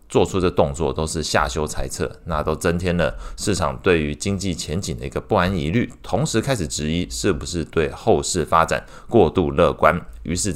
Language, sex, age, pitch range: Chinese, male, 20-39, 75-100 Hz